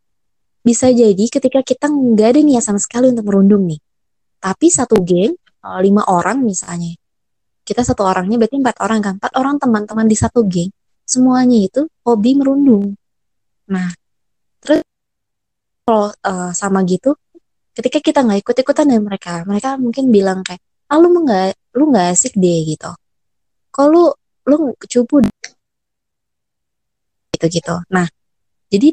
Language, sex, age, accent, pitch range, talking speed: Indonesian, female, 20-39, native, 180-250 Hz, 135 wpm